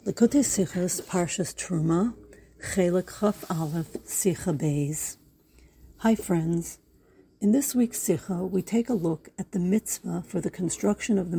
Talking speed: 140 wpm